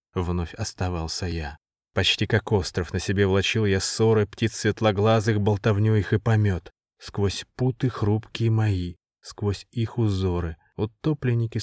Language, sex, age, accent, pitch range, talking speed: Russian, male, 20-39, native, 100-125 Hz, 130 wpm